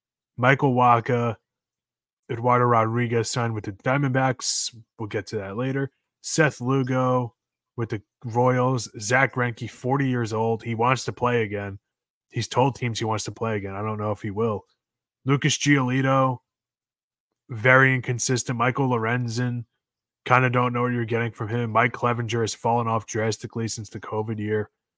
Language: English